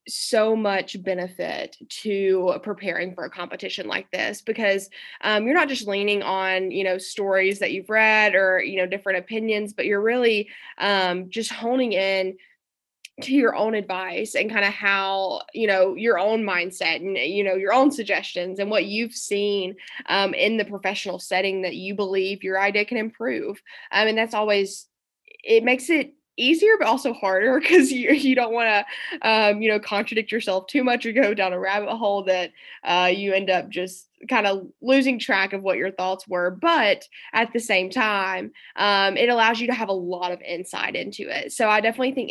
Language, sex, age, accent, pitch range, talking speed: English, female, 10-29, American, 190-230 Hz, 195 wpm